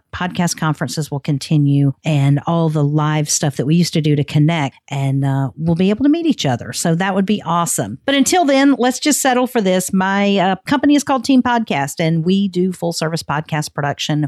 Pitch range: 150-195 Hz